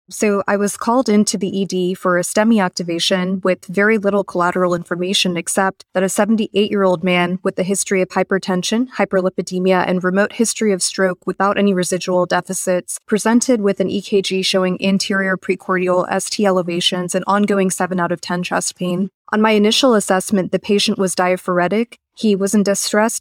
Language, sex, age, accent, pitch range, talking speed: English, female, 20-39, American, 185-205 Hz, 170 wpm